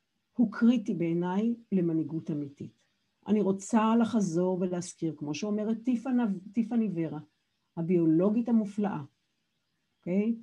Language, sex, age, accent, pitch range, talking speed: Hebrew, female, 50-69, native, 180-230 Hz, 105 wpm